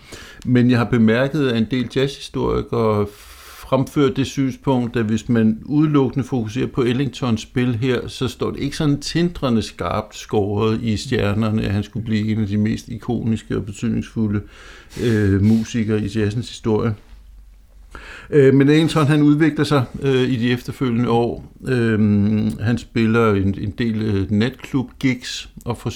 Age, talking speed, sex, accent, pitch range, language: 60-79, 155 wpm, male, native, 105-130 Hz, Danish